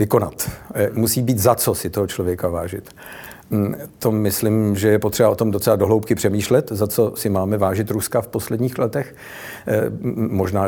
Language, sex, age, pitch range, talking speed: Czech, male, 50-69, 100-115 Hz, 155 wpm